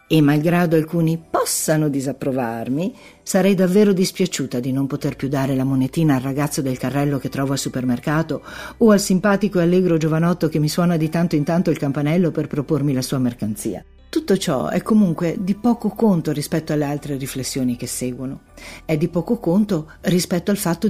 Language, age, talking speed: Italian, 50-69, 180 wpm